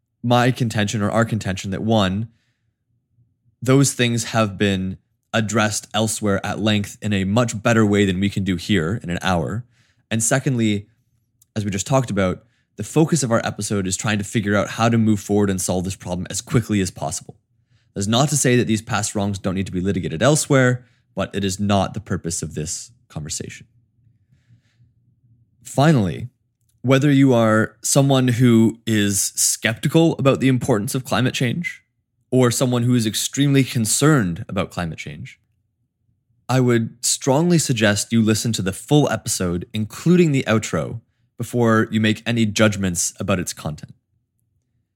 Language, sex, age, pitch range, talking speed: English, male, 20-39, 105-125 Hz, 165 wpm